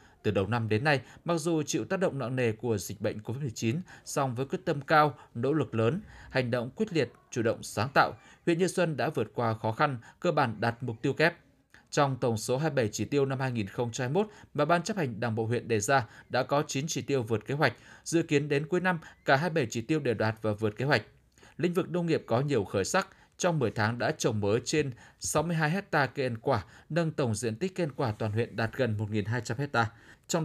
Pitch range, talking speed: 115-155 Hz, 235 wpm